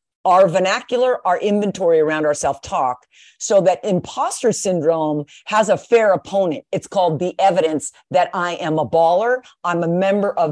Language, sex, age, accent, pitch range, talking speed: English, female, 50-69, American, 175-230 Hz, 165 wpm